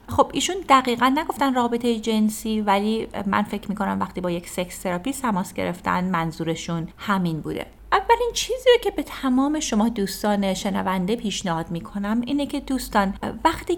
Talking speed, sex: 150 wpm, female